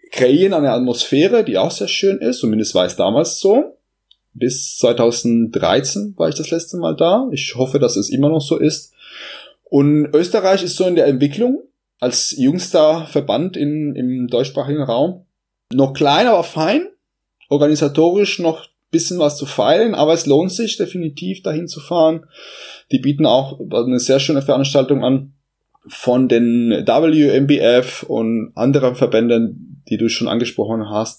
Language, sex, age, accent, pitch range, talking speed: German, male, 20-39, German, 110-150 Hz, 155 wpm